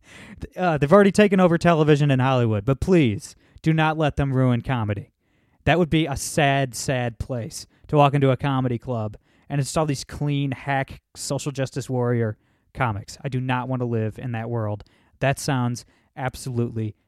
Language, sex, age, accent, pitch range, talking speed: English, male, 20-39, American, 125-160 Hz, 175 wpm